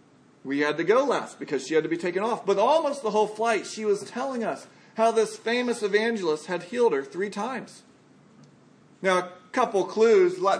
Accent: American